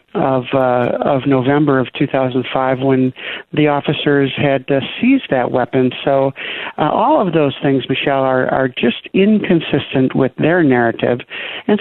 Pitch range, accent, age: 130-150 Hz, American, 60-79